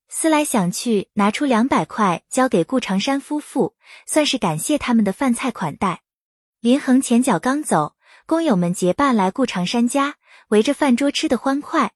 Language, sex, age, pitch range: Chinese, female, 20-39, 195-280 Hz